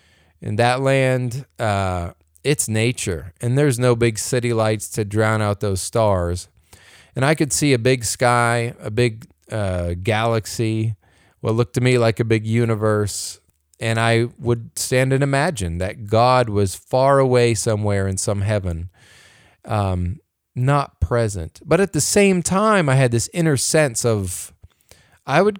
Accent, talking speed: American, 155 wpm